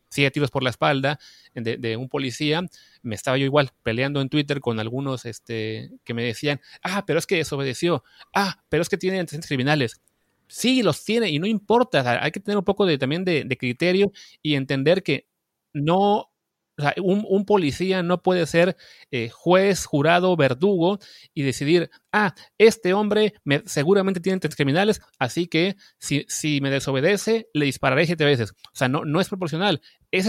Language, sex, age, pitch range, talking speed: Spanish, male, 30-49, 135-180 Hz, 185 wpm